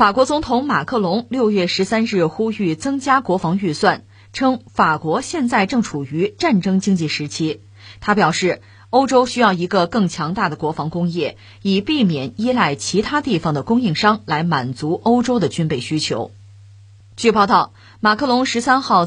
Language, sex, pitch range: Chinese, female, 150-225 Hz